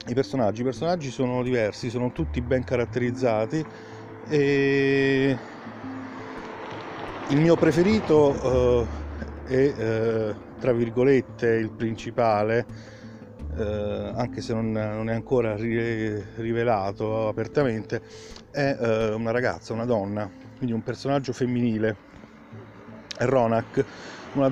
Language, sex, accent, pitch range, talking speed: Italian, male, native, 110-130 Hz, 105 wpm